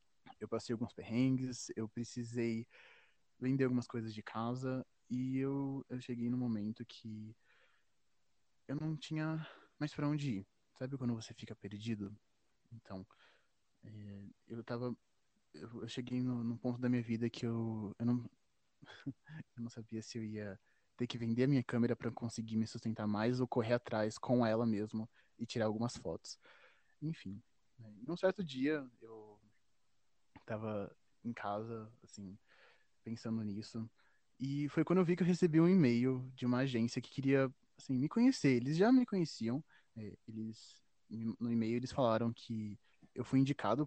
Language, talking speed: Portuguese, 160 wpm